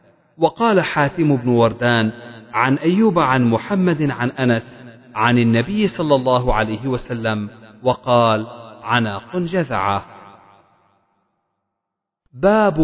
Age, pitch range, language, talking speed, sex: 40-59, 115-155 Hz, Arabic, 95 wpm, male